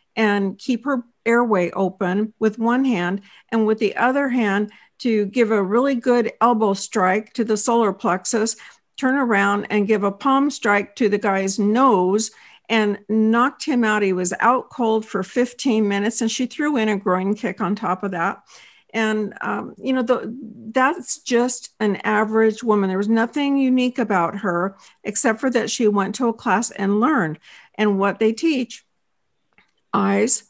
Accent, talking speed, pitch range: American, 170 wpm, 205-245 Hz